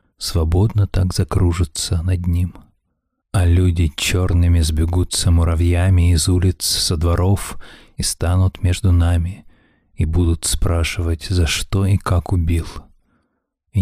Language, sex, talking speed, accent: Russian, male, 115 wpm, native